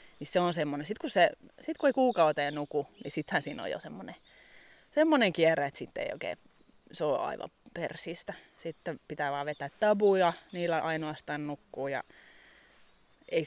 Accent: native